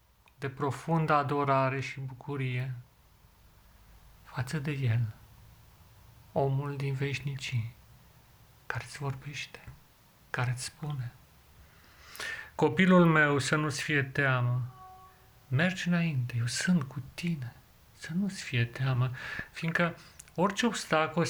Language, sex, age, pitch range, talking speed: Romanian, male, 40-59, 115-145 Hz, 100 wpm